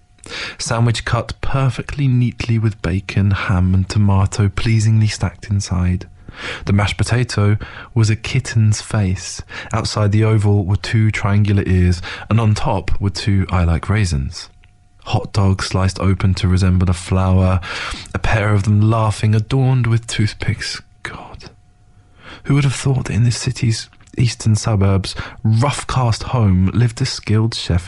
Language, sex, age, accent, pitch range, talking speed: English, male, 20-39, British, 95-115 Hz, 145 wpm